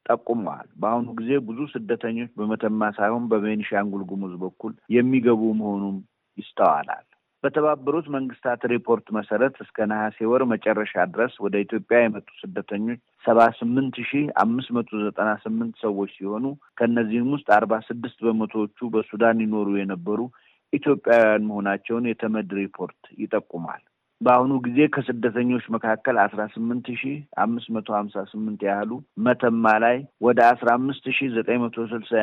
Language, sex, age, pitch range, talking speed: Amharic, male, 50-69, 105-125 Hz, 85 wpm